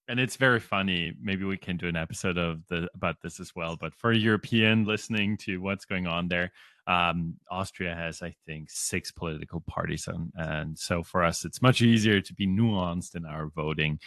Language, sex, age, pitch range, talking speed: English, male, 30-49, 90-115 Hz, 195 wpm